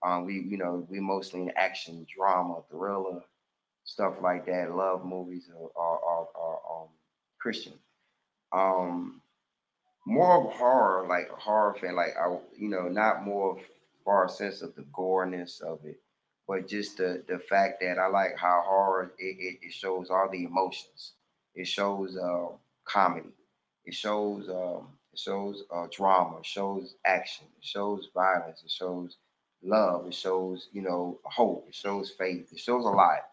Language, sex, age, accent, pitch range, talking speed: English, male, 20-39, American, 90-100 Hz, 160 wpm